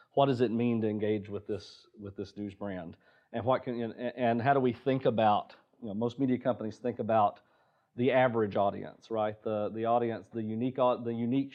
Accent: American